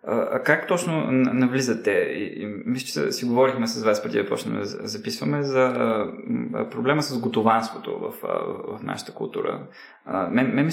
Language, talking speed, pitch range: Bulgarian, 135 wpm, 125-180 Hz